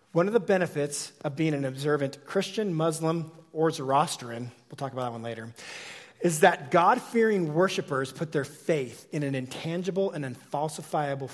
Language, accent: English, American